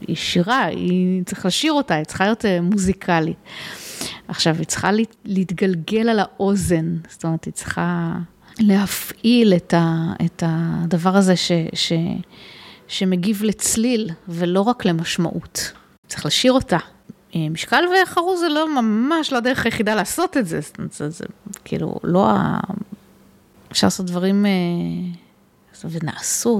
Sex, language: female, Hebrew